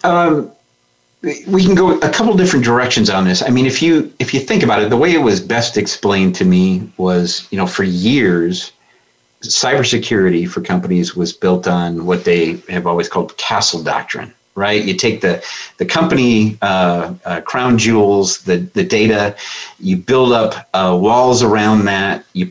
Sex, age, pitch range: male, 40-59, 90-115 Hz